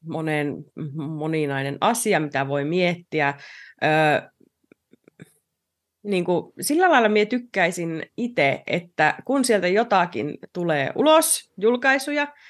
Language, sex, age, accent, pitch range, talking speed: Finnish, female, 30-49, native, 160-230 Hz, 100 wpm